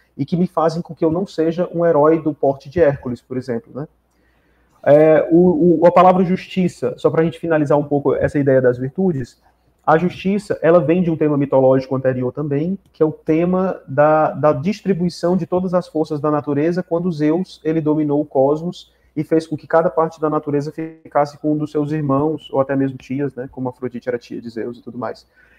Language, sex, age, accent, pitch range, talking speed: Portuguese, male, 30-49, Brazilian, 140-175 Hz, 205 wpm